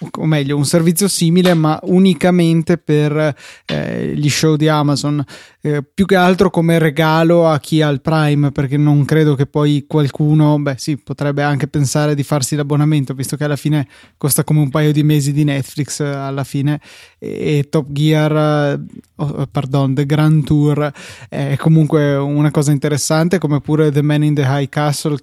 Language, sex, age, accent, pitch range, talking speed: Italian, male, 20-39, native, 145-160 Hz, 180 wpm